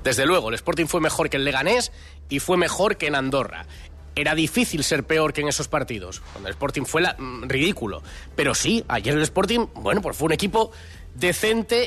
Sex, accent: male, Spanish